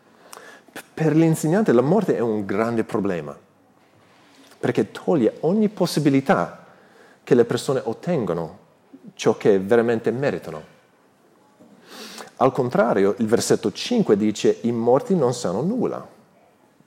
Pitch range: 105-155 Hz